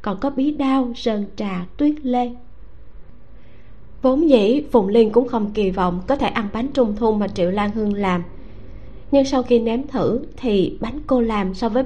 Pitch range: 195-255 Hz